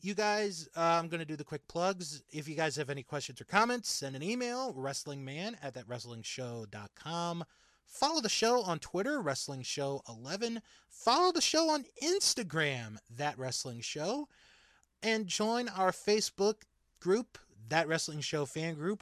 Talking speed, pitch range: 160 wpm, 135-185 Hz